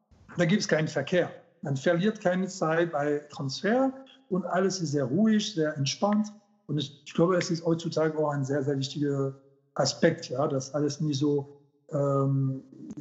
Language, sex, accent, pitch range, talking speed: German, male, German, 145-175 Hz, 170 wpm